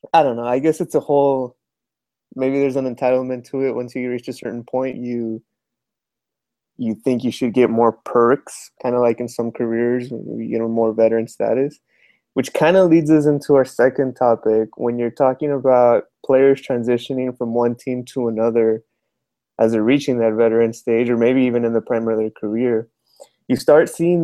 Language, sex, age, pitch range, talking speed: English, male, 20-39, 115-135 Hz, 185 wpm